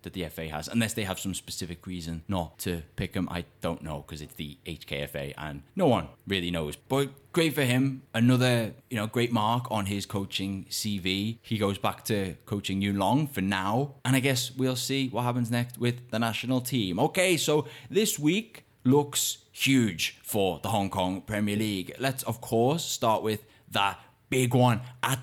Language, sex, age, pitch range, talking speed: English, male, 10-29, 100-130 Hz, 195 wpm